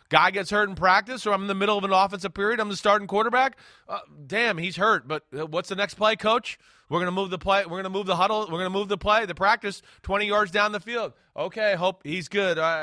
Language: English